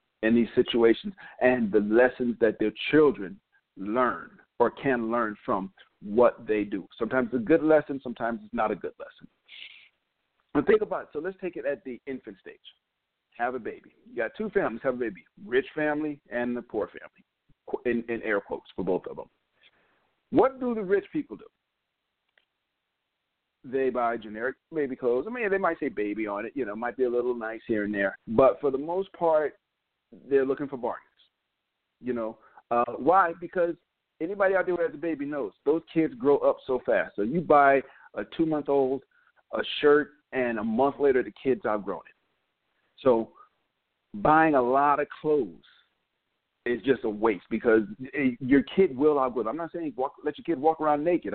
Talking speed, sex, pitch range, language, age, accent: 190 wpm, male, 120-165 Hz, English, 50-69, American